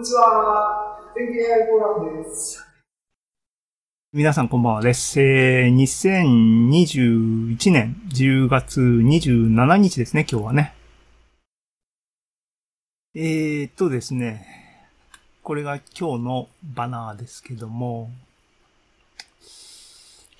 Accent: native